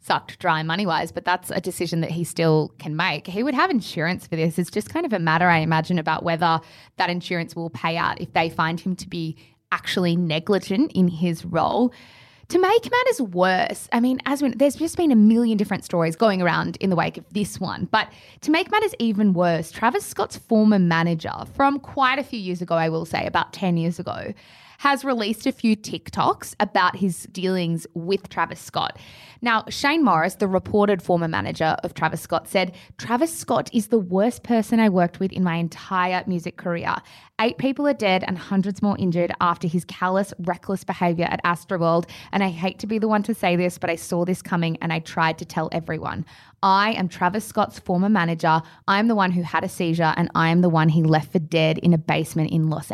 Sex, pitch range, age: female, 165-210 Hz, 20-39